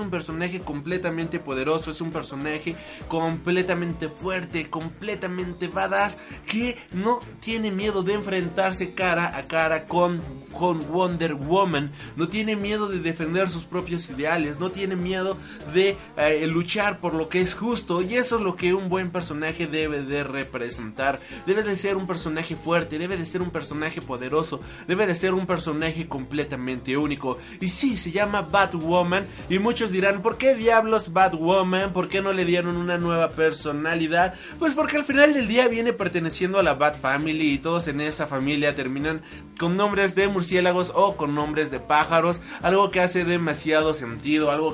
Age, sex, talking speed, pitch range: 30-49, male, 170 wpm, 155-195 Hz